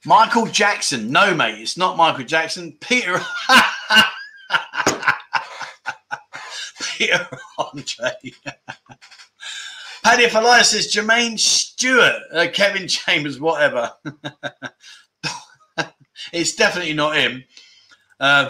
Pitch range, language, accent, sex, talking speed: 140-205 Hz, English, British, male, 85 wpm